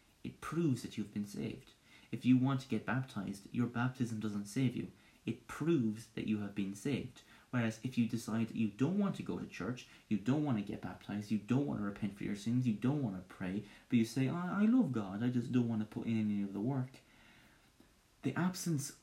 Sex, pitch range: male, 105-125 Hz